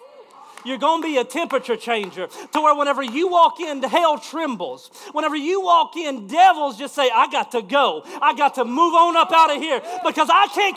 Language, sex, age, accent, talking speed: English, male, 40-59, American, 215 wpm